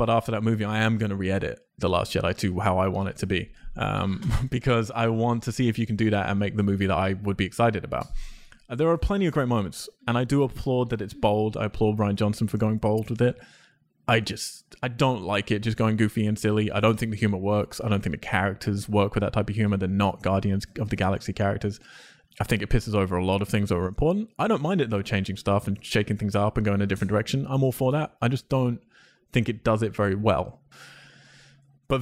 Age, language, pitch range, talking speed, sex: 20-39, English, 100-120 Hz, 260 wpm, male